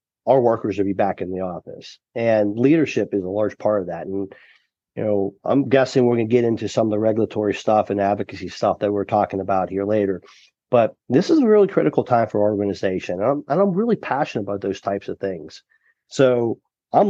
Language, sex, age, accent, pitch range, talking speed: English, male, 40-59, American, 105-125 Hz, 220 wpm